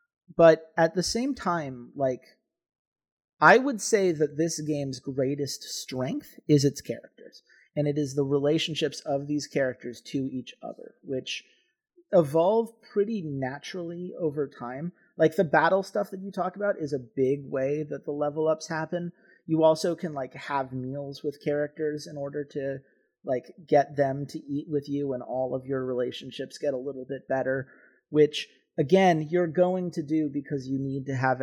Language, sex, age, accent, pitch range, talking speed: English, male, 30-49, American, 135-175 Hz, 170 wpm